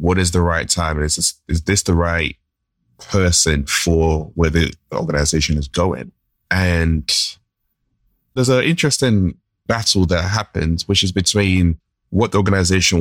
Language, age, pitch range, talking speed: English, 20-39, 80-100 Hz, 145 wpm